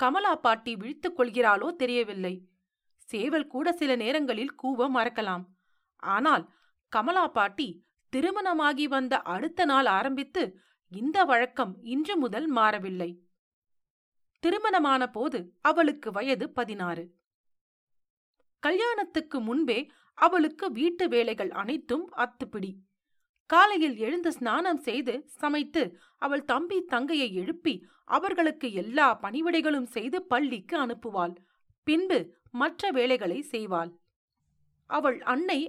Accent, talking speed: native, 95 wpm